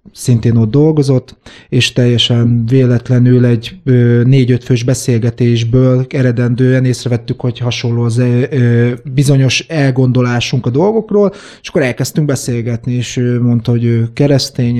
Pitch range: 120-135 Hz